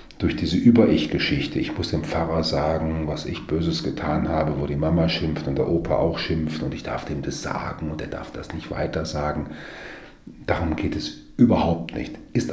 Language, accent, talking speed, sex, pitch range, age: German, German, 190 wpm, male, 75-95 Hz, 40-59